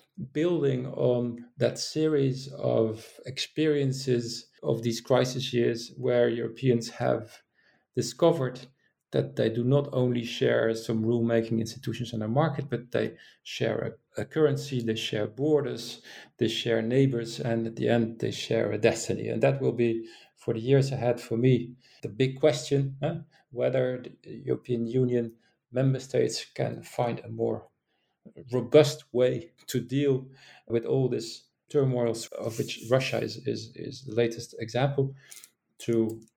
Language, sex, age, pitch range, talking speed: English, male, 40-59, 115-130 Hz, 145 wpm